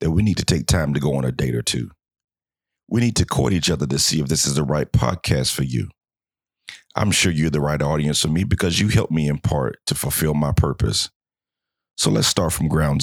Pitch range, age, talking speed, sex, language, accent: 75-85 Hz, 40-59, 240 wpm, male, English, American